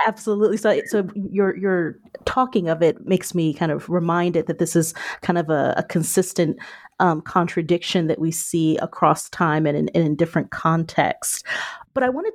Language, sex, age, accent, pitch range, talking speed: English, female, 30-49, American, 170-210 Hz, 175 wpm